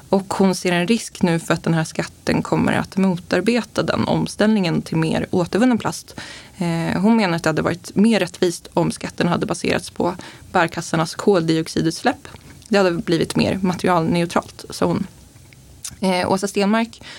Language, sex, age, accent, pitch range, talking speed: Swedish, female, 20-39, native, 170-205 Hz, 155 wpm